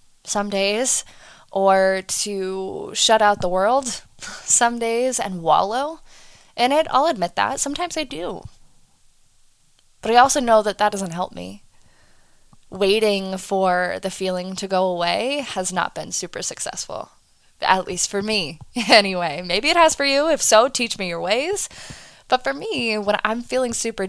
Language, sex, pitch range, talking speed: English, female, 190-235 Hz, 160 wpm